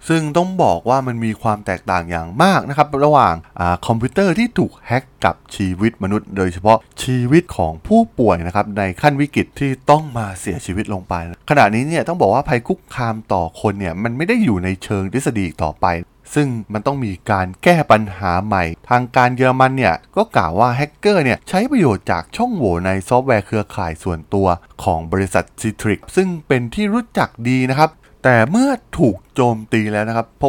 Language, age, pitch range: Thai, 20-39, 95-135 Hz